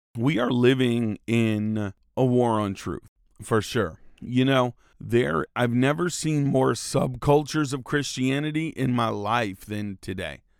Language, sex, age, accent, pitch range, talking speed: English, male, 40-59, American, 95-120 Hz, 140 wpm